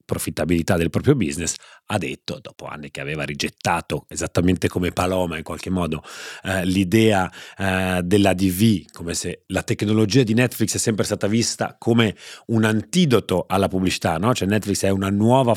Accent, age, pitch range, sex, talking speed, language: native, 30-49, 90-115 Hz, male, 165 wpm, Italian